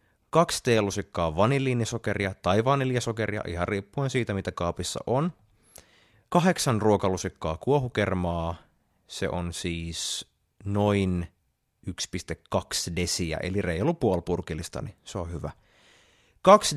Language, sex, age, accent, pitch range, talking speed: Finnish, male, 30-49, native, 90-130 Hz, 95 wpm